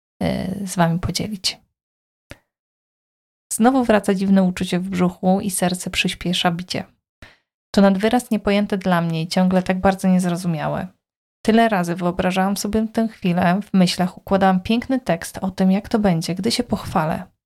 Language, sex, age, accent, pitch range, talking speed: Polish, female, 20-39, native, 185-210 Hz, 150 wpm